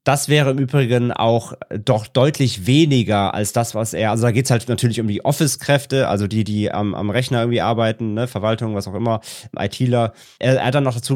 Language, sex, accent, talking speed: German, male, German, 220 wpm